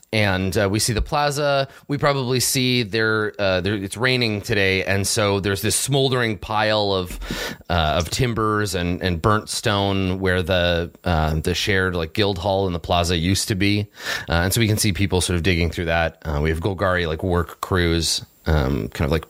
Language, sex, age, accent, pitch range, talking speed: English, male, 30-49, American, 90-115 Hz, 200 wpm